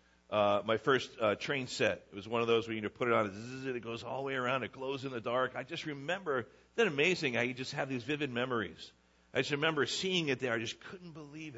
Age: 50-69